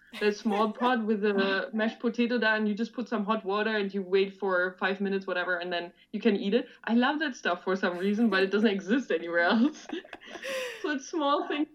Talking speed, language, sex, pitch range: 230 wpm, English, female, 185-235 Hz